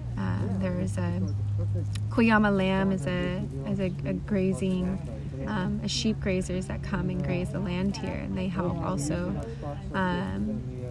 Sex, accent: female, American